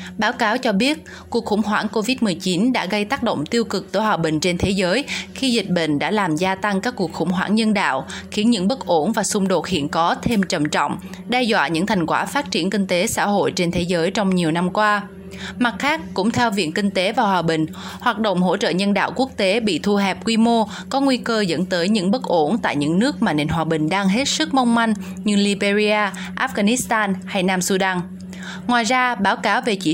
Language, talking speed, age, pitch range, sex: Vietnamese, 235 wpm, 20-39, 185-230 Hz, female